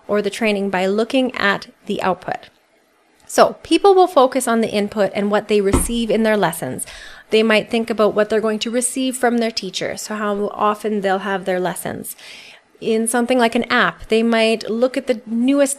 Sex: female